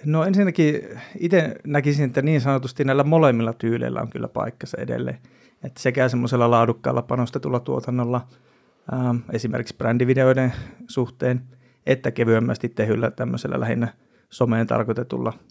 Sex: male